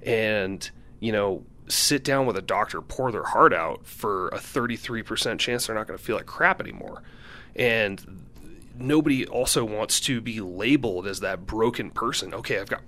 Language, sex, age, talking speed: English, male, 30-49, 175 wpm